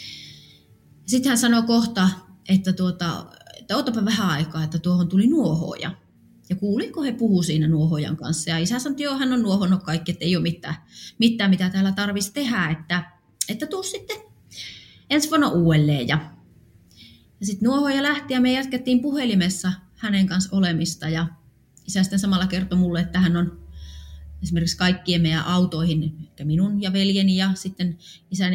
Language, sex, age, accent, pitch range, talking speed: Finnish, female, 30-49, native, 170-210 Hz, 160 wpm